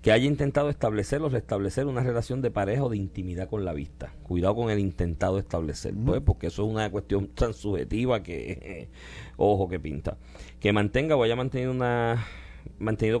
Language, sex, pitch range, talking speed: Spanish, male, 85-115 Hz, 180 wpm